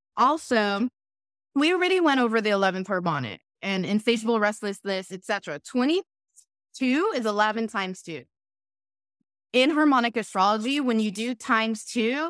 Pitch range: 200-260 Hz